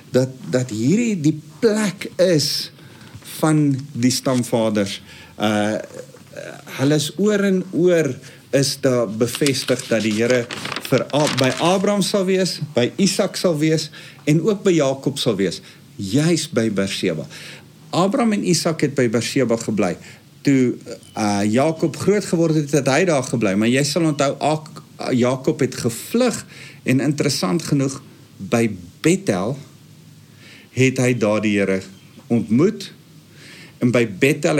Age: 50-69